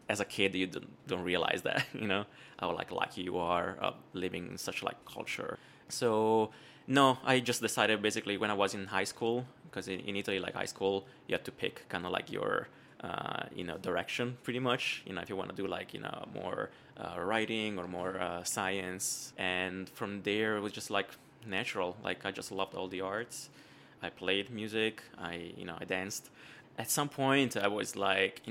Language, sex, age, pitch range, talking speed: English, male, 20-39, 95-115 Hz, 215 wpm